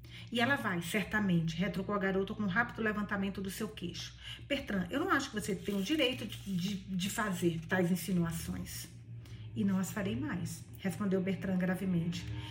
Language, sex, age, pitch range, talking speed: Portuguese, female, 40-59, 180-245 Hz, 175 wpm